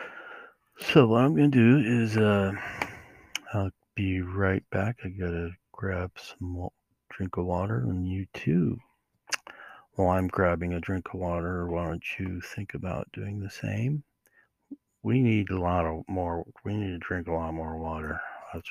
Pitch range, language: 90-110 Hz, English